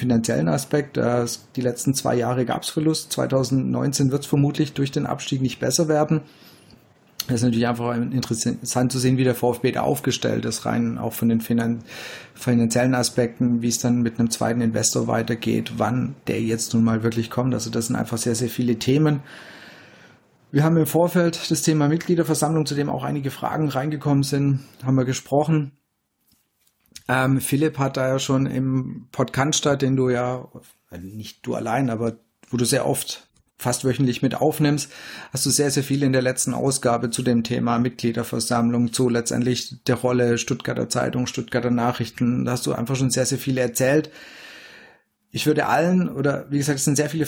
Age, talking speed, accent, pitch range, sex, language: 40-59, 180 wpm, German, 120-145 Hz, male, German